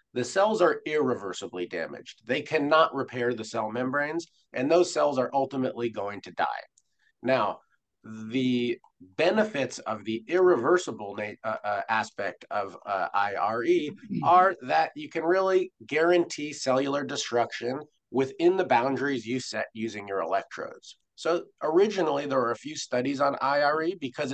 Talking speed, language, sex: 140 wpm, English, male